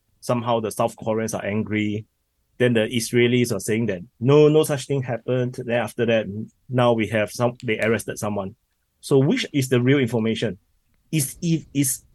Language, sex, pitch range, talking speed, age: English, male, 105-130 Hz, 175 wpm, 30-49